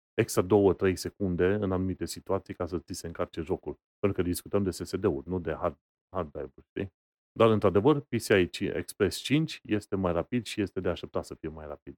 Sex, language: male, Romanian